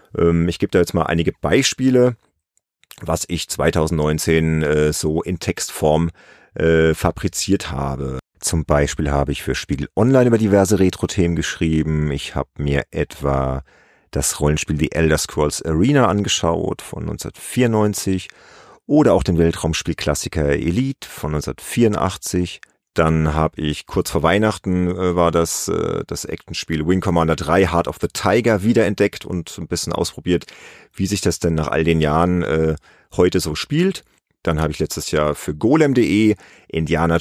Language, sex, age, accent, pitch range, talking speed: German, male, 40-59, German, 75-95 Hz, 145 wpm